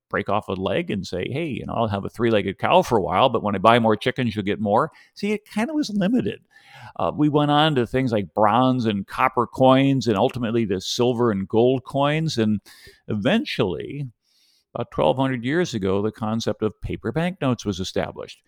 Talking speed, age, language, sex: 210 wpm, 50-69, English, male